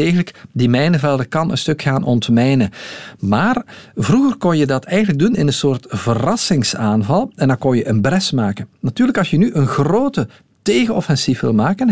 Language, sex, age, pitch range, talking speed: Dutch, male, 50-69, 125-195 Hz, 170 wpm